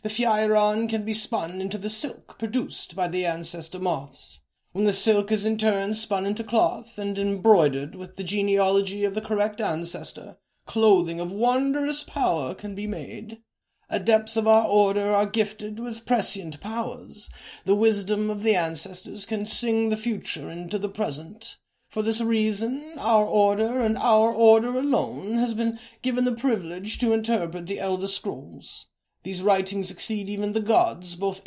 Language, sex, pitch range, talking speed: English, male, 195-225 Hz, 160 wpm